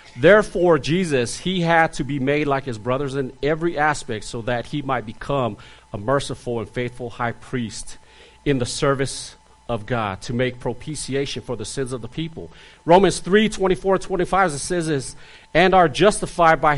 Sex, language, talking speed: male, English, 170 wpm